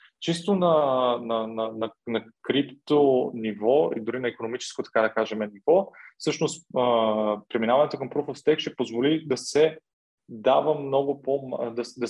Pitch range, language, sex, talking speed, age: 115-145 Hz, Bulgarian, male, 160 wpm, 20-39